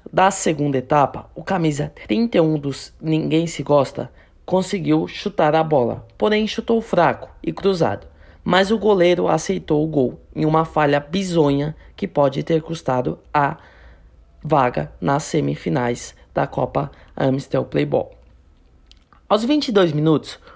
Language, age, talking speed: Portuguese, 20-39, 130 wpm